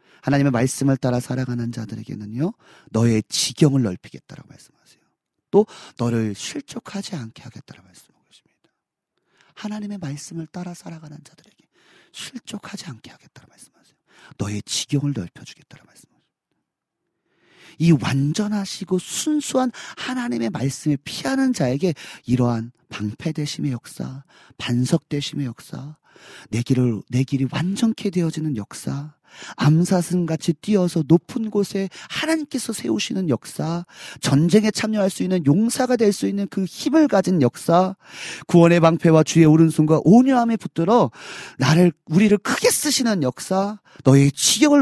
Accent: native